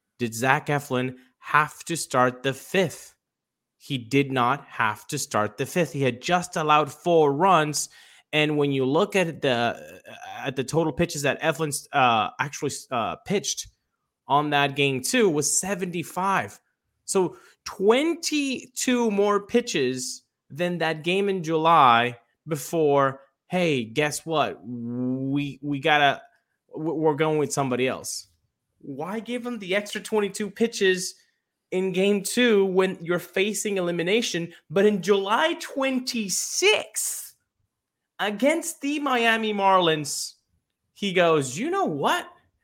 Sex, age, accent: male, 20-39, American